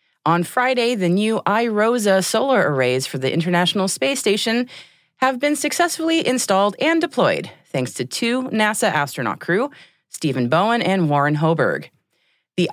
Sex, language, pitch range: female, English, 130-210 Hz